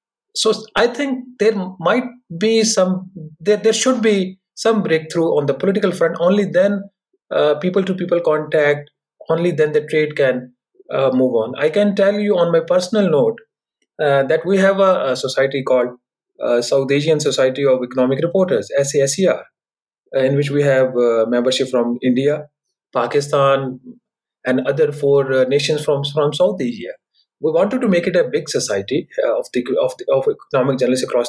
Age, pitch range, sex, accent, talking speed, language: 30-49, 135-195 Hz, male, Indian, 170 wpm, English